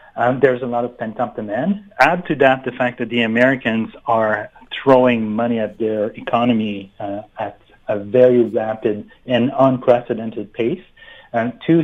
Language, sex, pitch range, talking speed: English, male, 115-130 Hz, 155 wpm